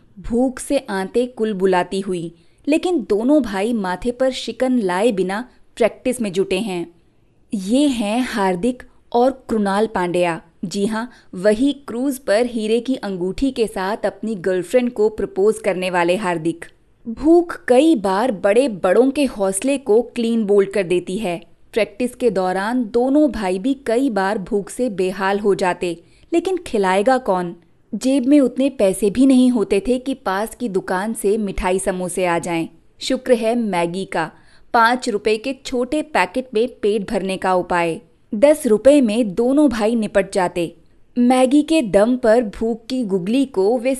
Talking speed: 160 wpm